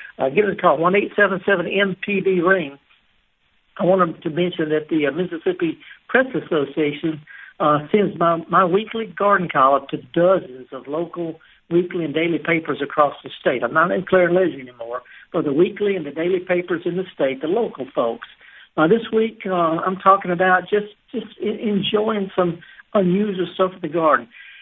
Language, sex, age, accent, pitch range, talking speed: English, male, 60-79, American, 150-195 Hz, 170 wpm